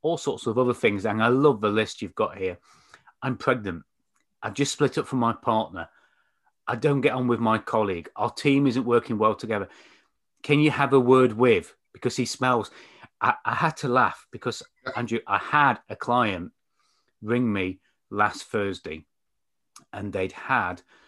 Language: English